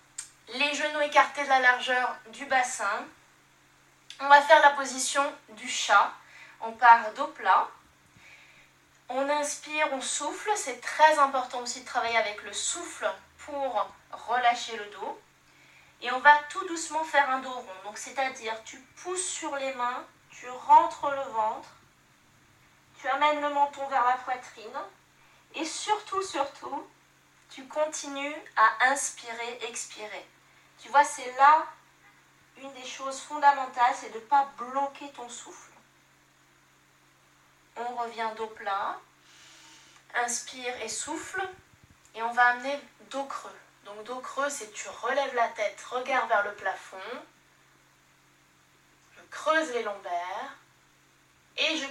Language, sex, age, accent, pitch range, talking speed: French, female, 20-39, French, 230-285 Hz, 135 wpm